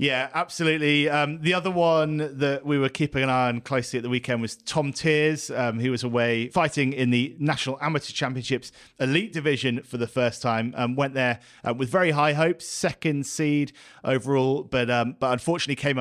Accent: British